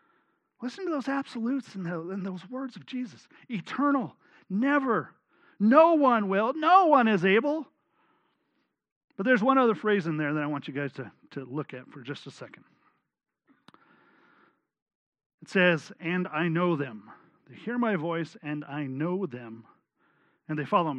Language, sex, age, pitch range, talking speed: English, male, 40-59, 155-220 Hz, 155 wpm